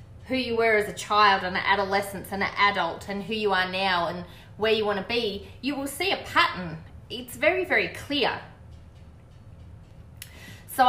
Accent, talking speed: Australian, 175 wpm